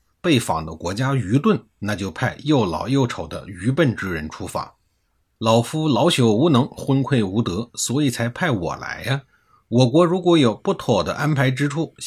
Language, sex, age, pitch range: Chinese, male, 50-69, 100-140 Hz